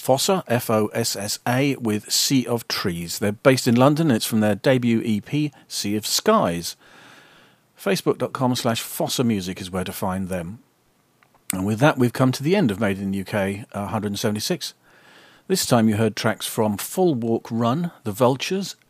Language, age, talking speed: English, 40-59, 170 wpm